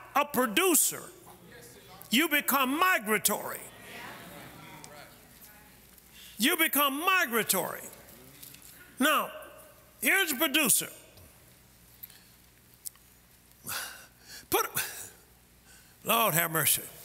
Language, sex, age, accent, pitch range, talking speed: English, male, 60-79, American, 160-265 Hz, 55 wpm